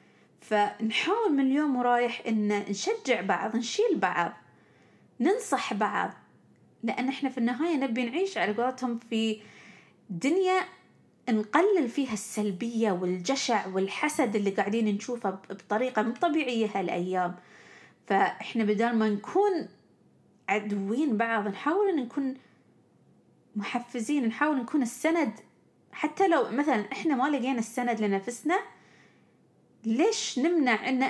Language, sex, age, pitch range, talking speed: Arabic, female, 30-49, 215-290 Hz, 105 wpm